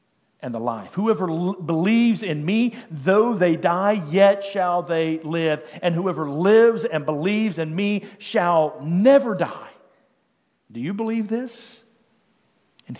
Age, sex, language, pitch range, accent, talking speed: 50-69, male, English, 145-215 Hz, American, 140 wpm